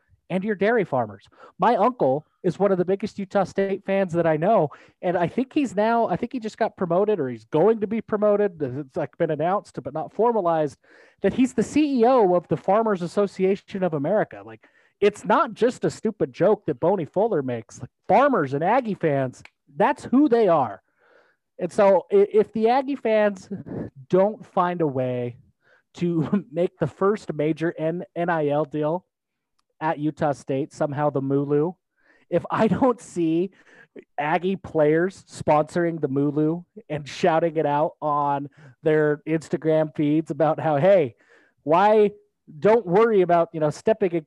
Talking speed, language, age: 165 wpm, English, 30-49